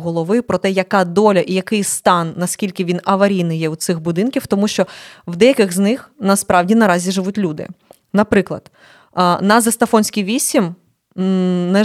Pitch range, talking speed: 180-220 Hz, 150 wpm